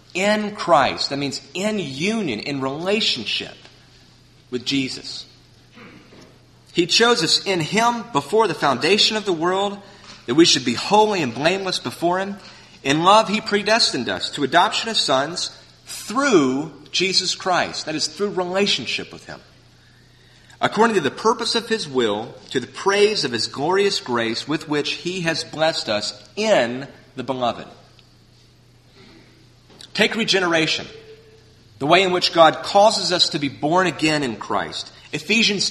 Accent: American